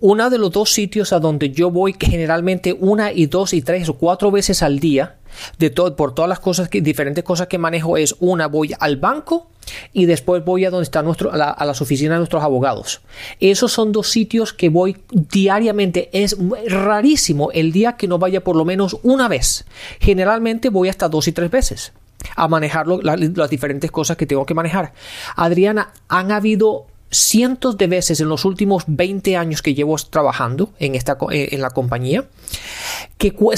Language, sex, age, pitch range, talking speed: Spanish, male, 30-49, 165-210 Hz, 190 wpm